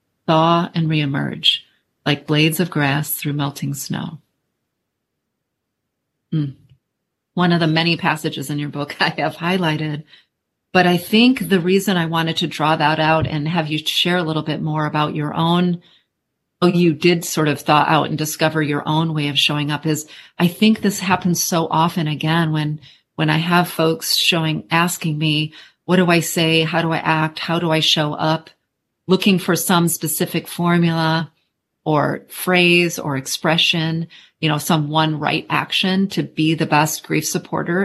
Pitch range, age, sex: 155-175 Hz, 40-59, female